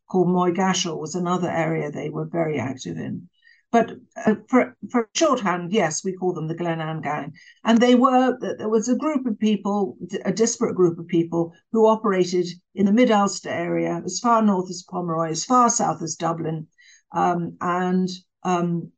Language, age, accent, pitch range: English, 60-79, British, 170-205 Hz